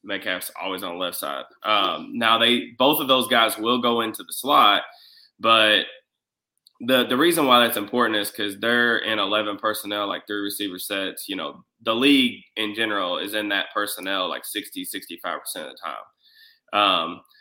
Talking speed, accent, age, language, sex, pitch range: 180 wpm, American, 20-39, English, male, 105-125 Hz